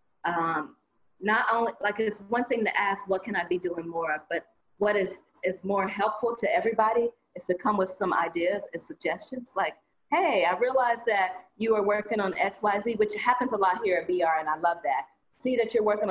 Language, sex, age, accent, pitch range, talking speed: English, female, 40-59, American, 180-230 Hz, 210 wpm